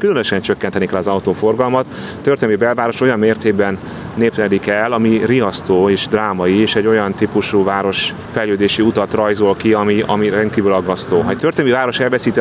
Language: Hungarian